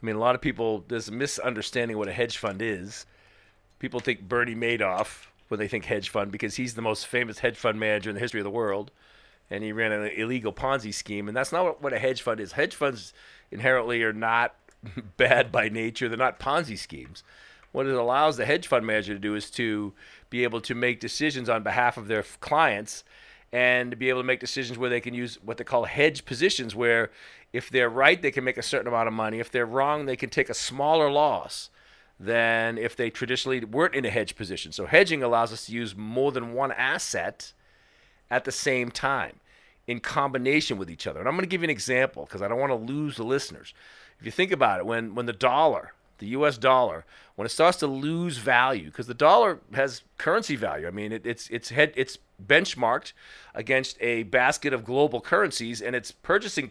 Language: English